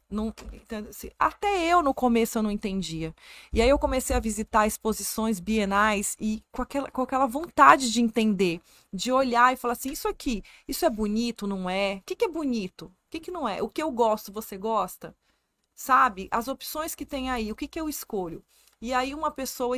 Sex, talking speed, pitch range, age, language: female, 195 wpm, 210-255 Hz, 30-49, Portuguese